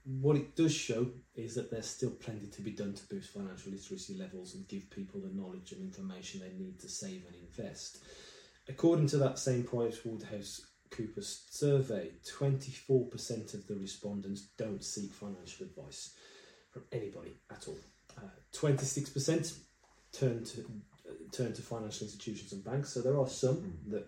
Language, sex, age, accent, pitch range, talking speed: English, male, 20-39, British, 105-140 Hz, 160 wpm